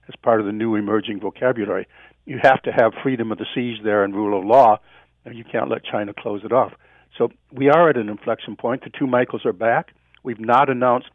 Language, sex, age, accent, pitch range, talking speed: English, male, 60-79, American, 110-130 Hz, 230 wpm